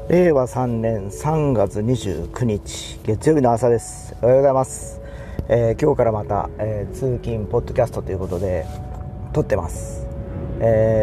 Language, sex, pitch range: Japanese, male, 85-140 Hz